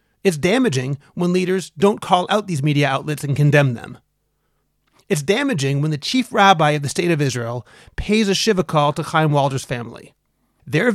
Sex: male